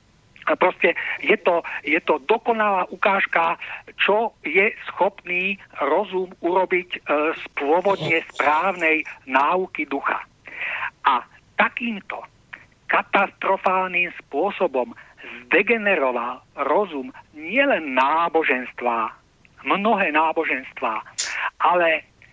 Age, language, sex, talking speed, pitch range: 60-79, Slovak, male, 80 wpm, 165-215 Hz